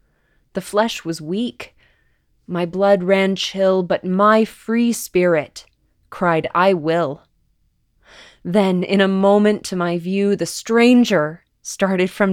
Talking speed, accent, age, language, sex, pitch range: 125 wpm, American, 20-39, English, female, 165-205 Hz